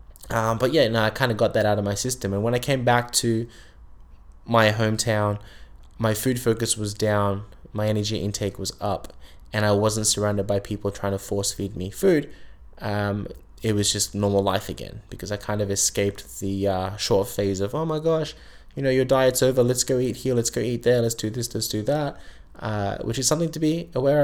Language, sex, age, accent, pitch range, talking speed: English, male, 20-39, Australian, 100-120 Hz, 220 wpm